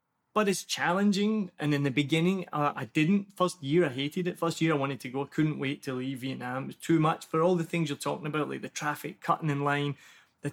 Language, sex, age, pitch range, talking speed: English, male, 20-39, 145-180 Hz, 255 wpm